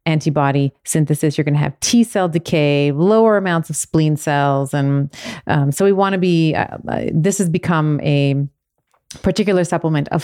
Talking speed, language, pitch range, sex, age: 175 wpm, English, 150-180 Hz, female, 30-49